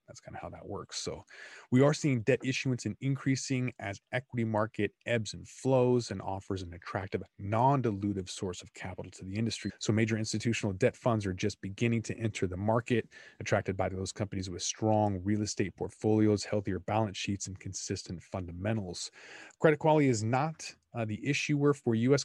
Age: 30-49